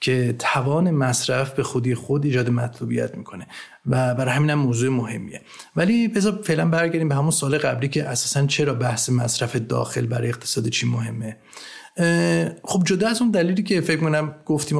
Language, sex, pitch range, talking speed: Persian, male, 125-155 Hz, 165 wpm